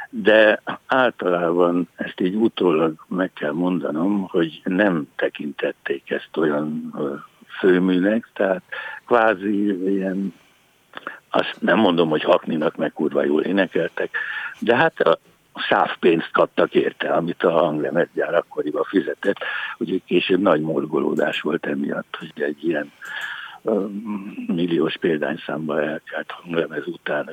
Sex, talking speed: male, 110 wpm